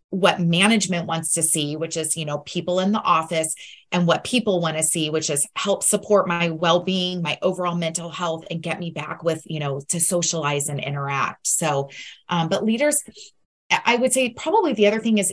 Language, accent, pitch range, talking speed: English, American, 160-210 Hz, 205 wpm